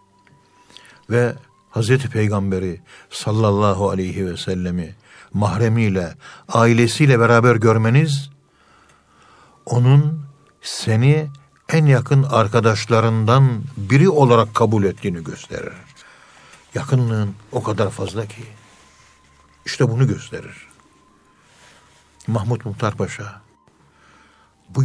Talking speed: 80 wpm